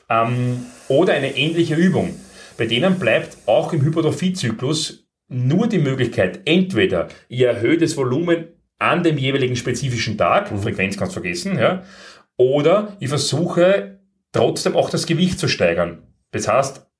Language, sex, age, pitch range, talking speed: German, male, 30-49, 120-170 Hz, 140 wpm